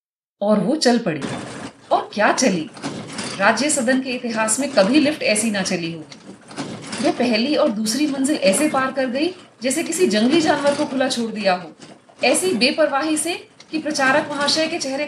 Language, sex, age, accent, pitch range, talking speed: Hindi, female, 30-49, native, 225-315 Hz, 105 wpm